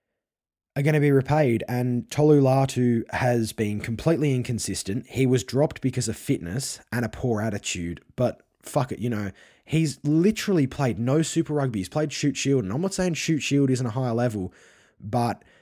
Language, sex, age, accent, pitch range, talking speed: English, male, 20-39, Australian, 105-135 Hz, 185 wpm